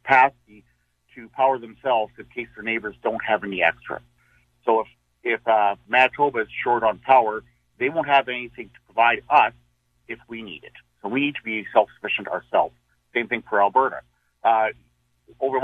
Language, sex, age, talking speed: English, male, 50-69, 175 wpm